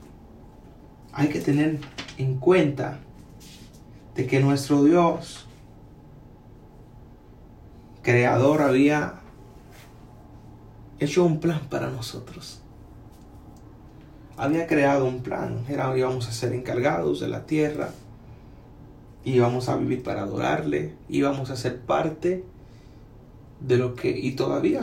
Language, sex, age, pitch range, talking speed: Spanish, male, 30-49, 120-145 Hz, 100 wpm